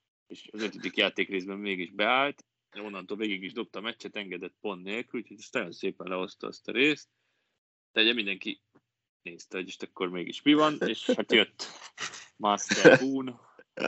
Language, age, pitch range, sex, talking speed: Hungarian, 20-39, 95-115 Hz, male, 155 wpm